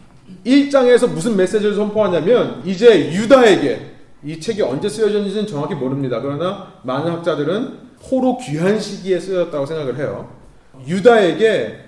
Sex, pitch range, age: male, 150-230 Hz, 30-49